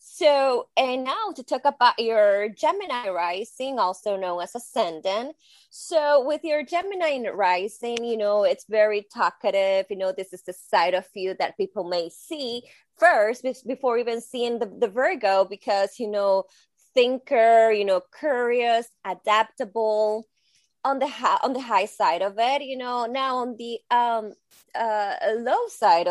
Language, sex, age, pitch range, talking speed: English, female, 20-39, 200-260 Hz, 155 wpm